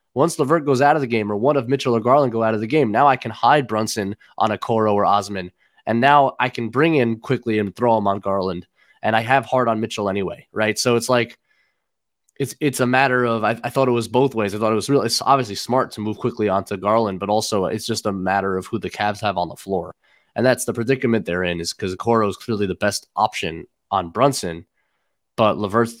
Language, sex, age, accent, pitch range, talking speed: English, male, 20-39, American, 105-125 Hz, 250 wpm